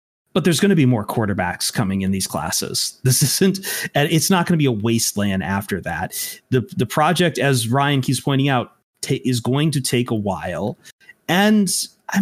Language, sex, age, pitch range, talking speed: English, male, 30-49, 120-160 Hz, 190 wpm